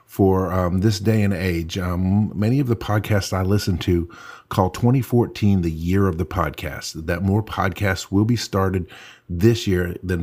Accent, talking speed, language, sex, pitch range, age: American, 175 wpm, English, male, 90-110 Hz, 50-69